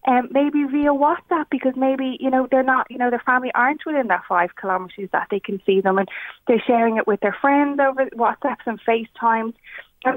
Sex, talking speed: female, 215 wpm